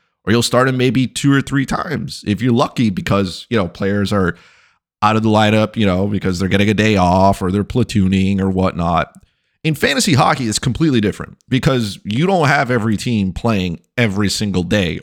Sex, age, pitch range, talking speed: male, 30-49, 95-125 Hz, 200 wpm